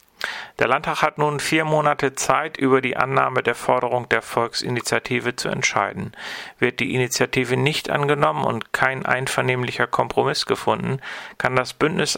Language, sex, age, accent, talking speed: German, male, 40-59, German, 145 wpm